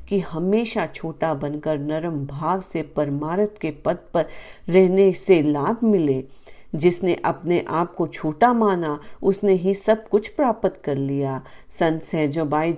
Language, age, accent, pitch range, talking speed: Hindi, 40-59, native, 160-215 Hz, 140 wpm